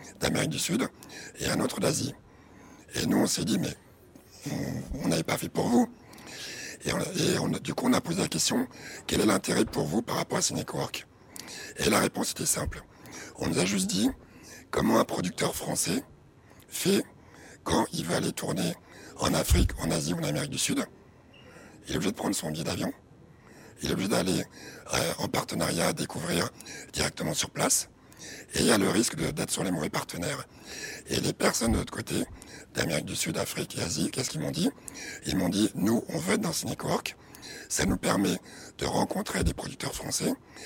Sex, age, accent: male, 60-79, French